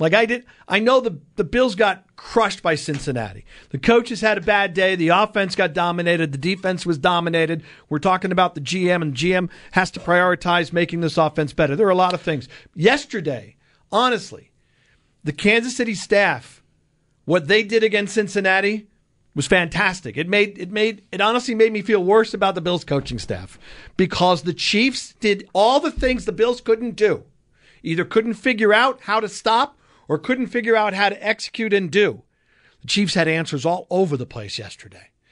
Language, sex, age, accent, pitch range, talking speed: English, male, 50-69, American, 160-215 Hz, 190 wpm